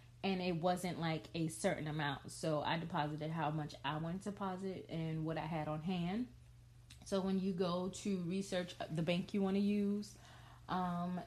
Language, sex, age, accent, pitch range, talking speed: English, female, 30-49, American, 150-190 Hz, 185 wpm